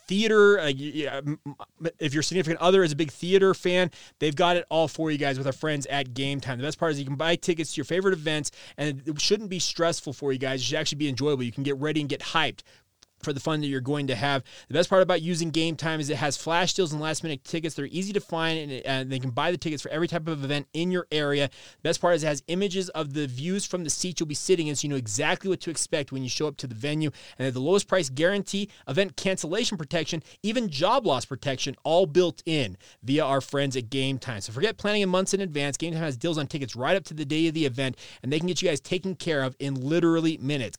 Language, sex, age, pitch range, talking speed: English, male, 20-39, 140-180 Hz, 270 wpm